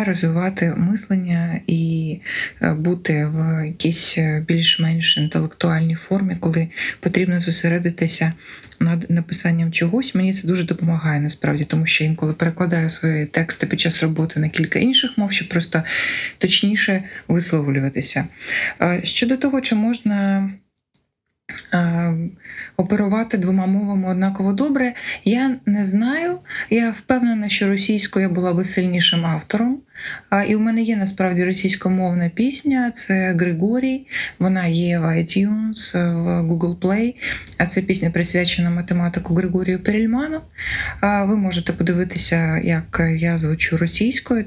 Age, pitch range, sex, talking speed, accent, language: 20-39, 170-200 Hz, female, 120 wpm, native, Ukrainian